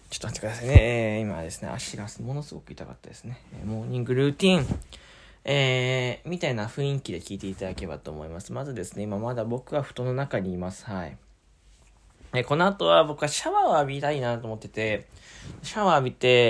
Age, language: 20-39, Japanese